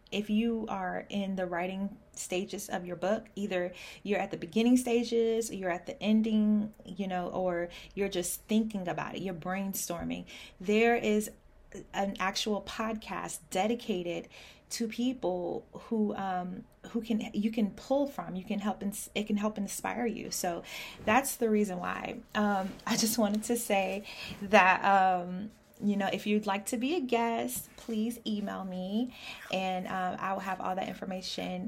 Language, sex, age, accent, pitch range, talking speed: English, female, 20-39, American, 180-220 Hz, 165 wpm